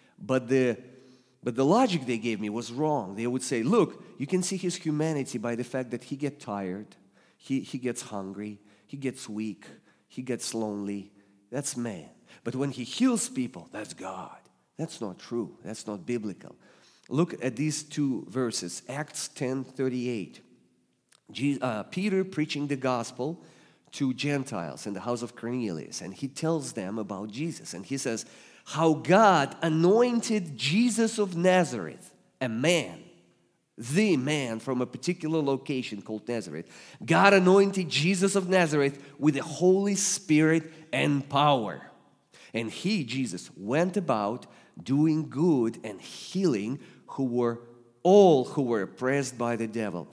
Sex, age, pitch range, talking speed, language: male, 40-59, 115-160 Hz, 150 wpm, English